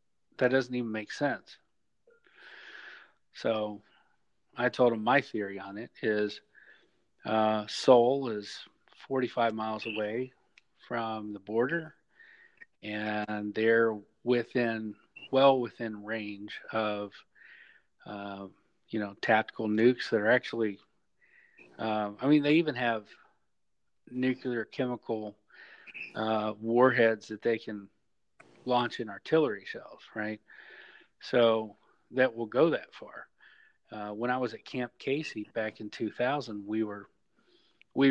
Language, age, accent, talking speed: English, 40-59, American, 115 wpm